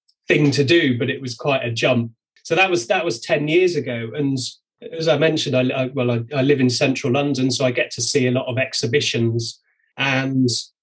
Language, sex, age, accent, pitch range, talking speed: English, male, 30-49, British, 125-150 Hz, 220 wpm